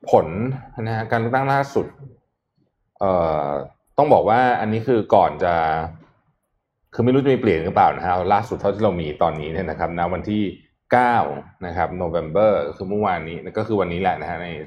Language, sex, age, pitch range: Thai, male, 20-39, 80-115 Hz